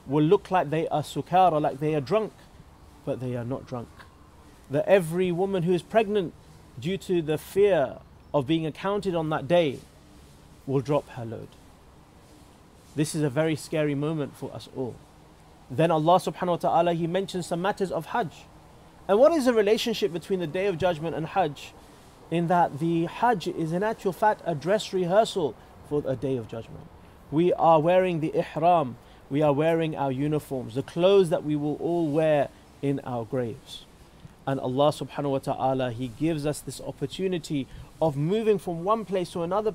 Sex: male